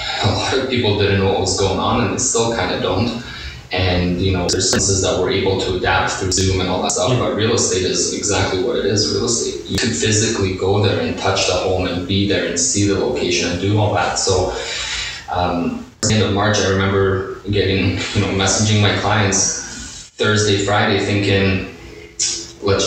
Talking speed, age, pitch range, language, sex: 205 wpm, 20-39, 90-100 Hz, English, male